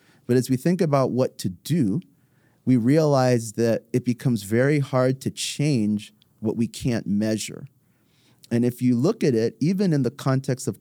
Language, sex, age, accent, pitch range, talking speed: English, male, 30-49, American, 110-140 Hz, 180 wpm